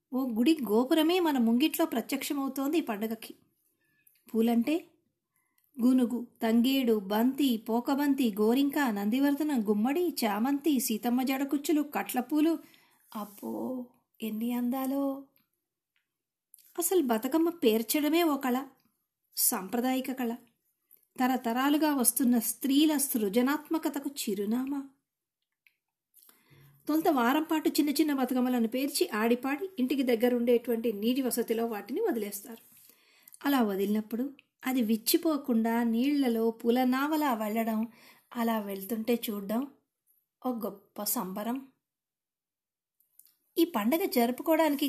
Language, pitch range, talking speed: Telugu, 230-290 Hz, 85 wpm